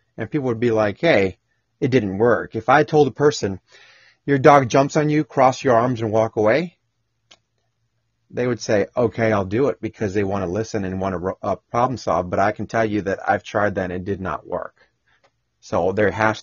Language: English